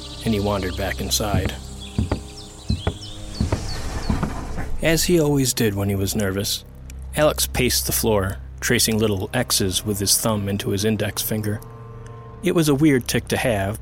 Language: English